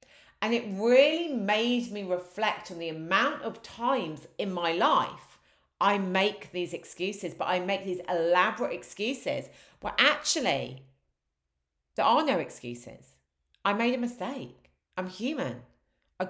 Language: English